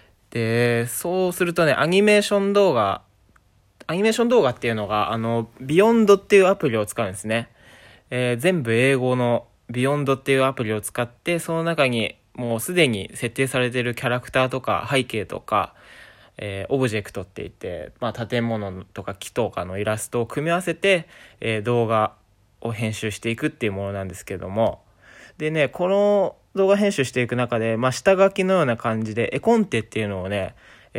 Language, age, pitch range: Japanese, 20-39, 105-150 Hz